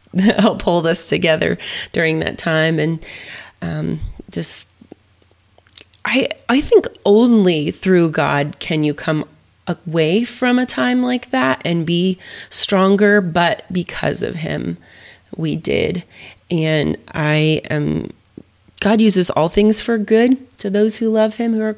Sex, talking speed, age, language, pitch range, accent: female, 140 wpm, 30-49, English, 155-215 Hz, American